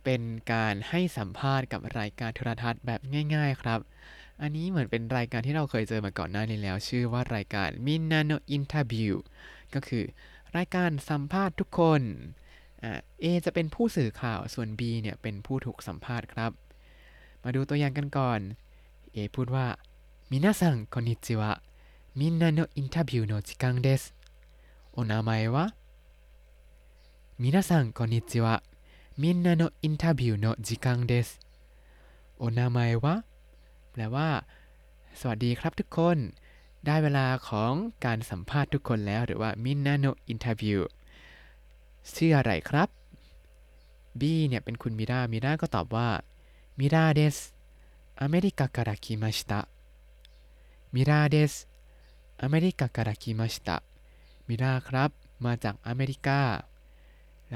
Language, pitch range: Thai, 100-140 Hz